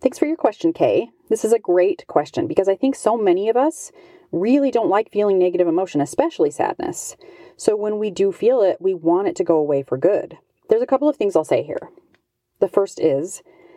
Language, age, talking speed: English, 30-49, 220 wpm